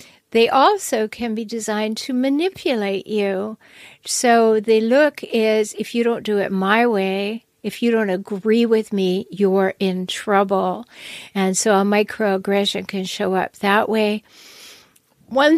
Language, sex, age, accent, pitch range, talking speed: English, female, 60-79, American, 205-240 Hz, 145 wpm